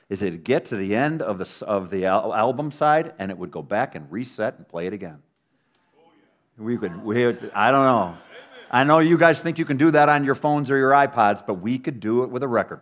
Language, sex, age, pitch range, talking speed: English, male, 50-69, 100-130 Hz, 250 wpm